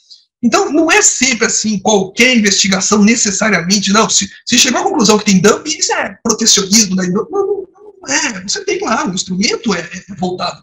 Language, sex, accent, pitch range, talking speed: Portuguese, male, Brazilian, 195-300 Hz, 185 wpm